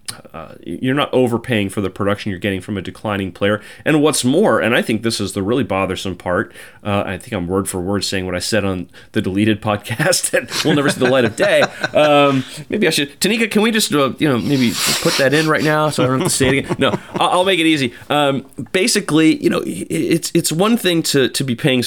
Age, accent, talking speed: 30-49, American, 245 wpm